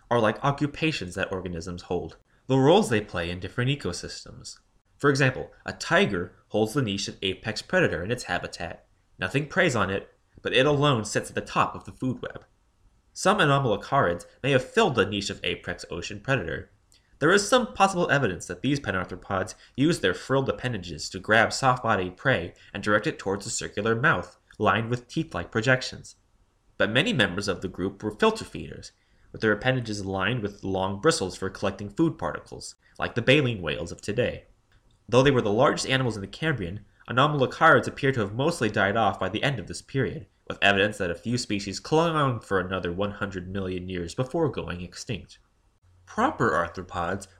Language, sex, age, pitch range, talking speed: English, male, 20-39, 95-130 Hz, 185 wpm